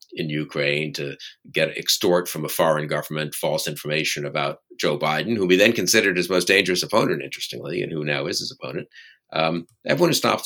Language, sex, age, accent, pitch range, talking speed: English, male, 50-69, American, 75-100 Hz, 190 wpm